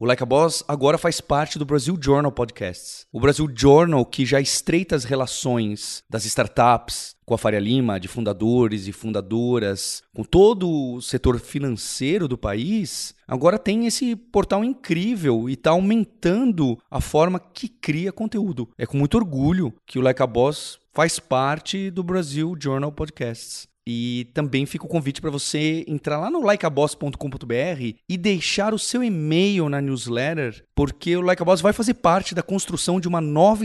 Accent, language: Brazilian, Portuguese